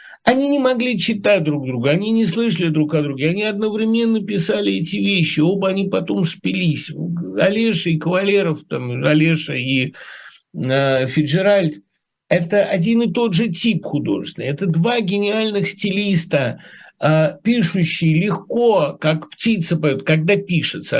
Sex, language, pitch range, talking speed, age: male, Russian, 155-205 Hz, 140 wpm, 60-79